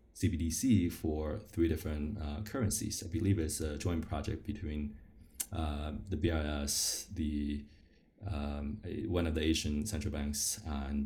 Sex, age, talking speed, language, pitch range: male, 20-39, 135 wpm, English, 75-105 Hz